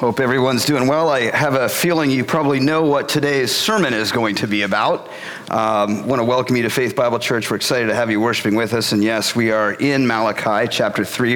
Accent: American